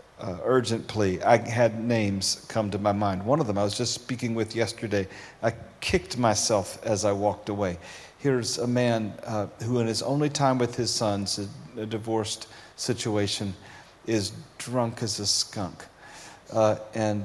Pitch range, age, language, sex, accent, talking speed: 105-125 Hz, 40-59, English, male, American, 165 wpm